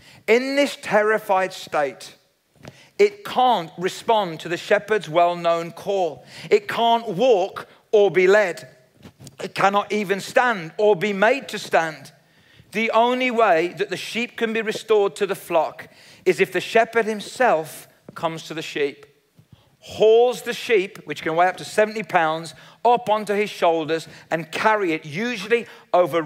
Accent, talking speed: British, 155 wpm